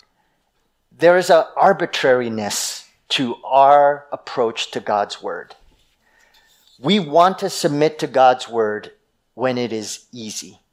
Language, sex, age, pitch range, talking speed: English, male, 40-59, 125-185 Hz, 115 wpm